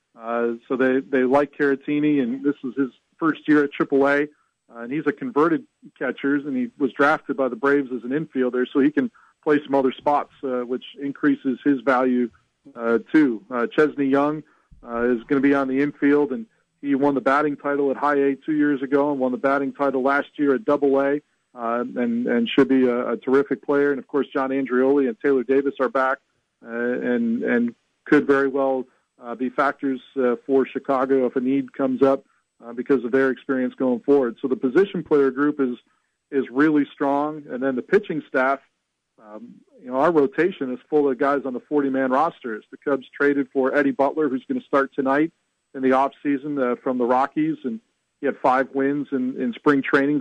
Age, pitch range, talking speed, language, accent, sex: 40-59, 130-145 Hz, 205 wpm, English, American, male